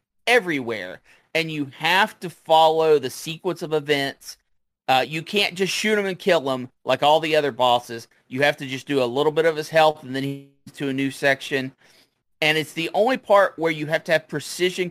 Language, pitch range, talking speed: English, 135-185 Hz, 215 wpm